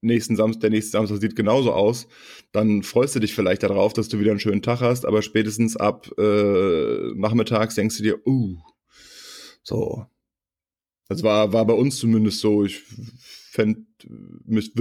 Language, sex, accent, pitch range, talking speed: German, male, German, 100-115 Hz, 165 wpm